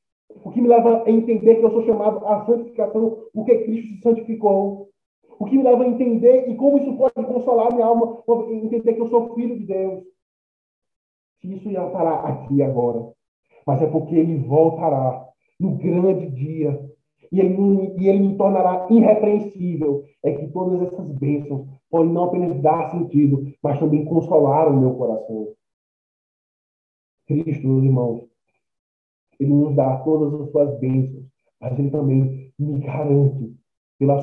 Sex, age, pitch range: male, 20-39, 135-195 Hz